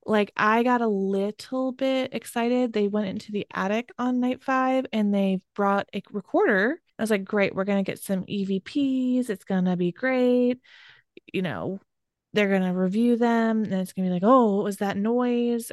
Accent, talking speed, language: American, 200 wpm, English